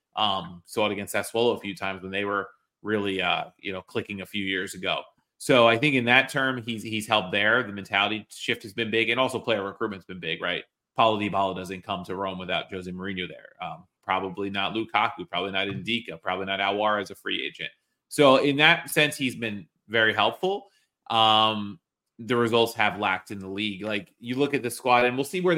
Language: English